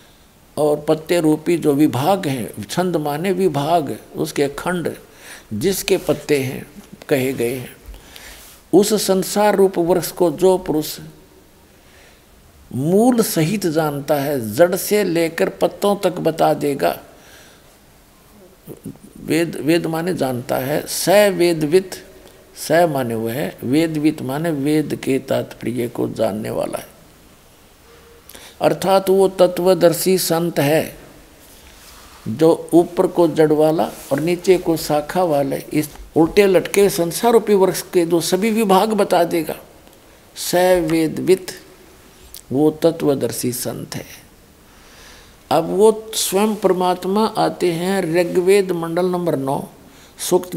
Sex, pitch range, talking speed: male, 150-185 Hz, 115 wpm